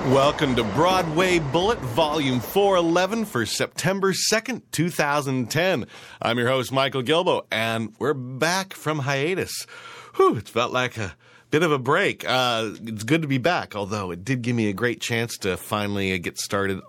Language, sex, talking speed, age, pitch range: English, male, 165 wpm, 40-59, 95-135 Hz